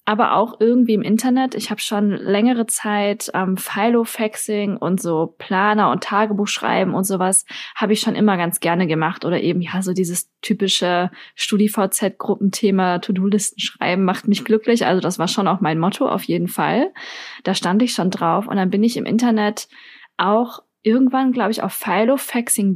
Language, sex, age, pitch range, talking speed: German, female, 20-39, 190-235 Hz, 170 wpm